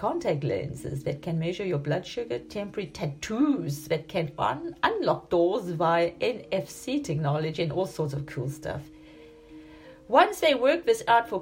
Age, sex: 50-69, female